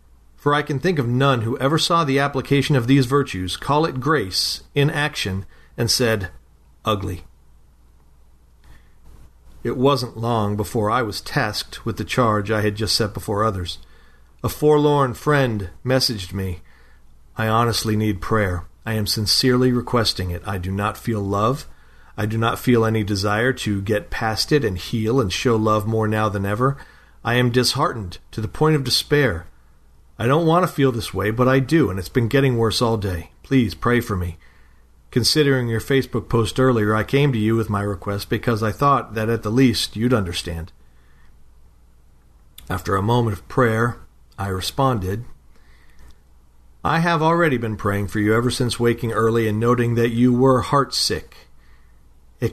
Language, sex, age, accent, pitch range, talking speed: English, male, 40-59, American, 90-130 Hz, 175 wpm